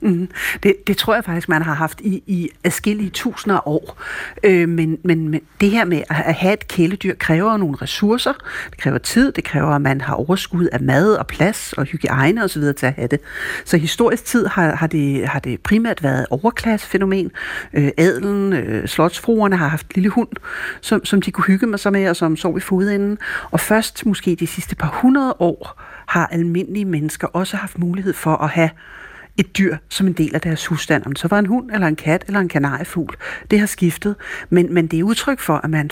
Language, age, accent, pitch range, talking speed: Danish, 60-79, native, 155-200 Hz, 215 wpm